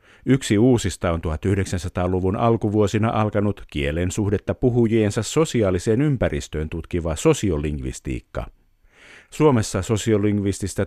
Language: Finnish